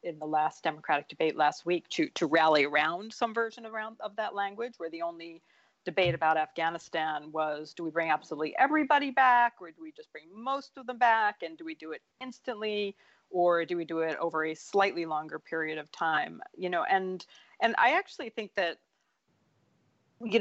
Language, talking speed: English, 195 wpm